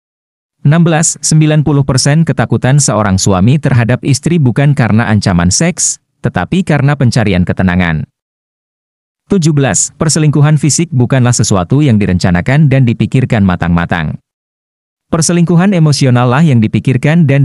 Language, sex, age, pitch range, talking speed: Indonesian, male, 40-59, 105-150 Hz, 105 wpm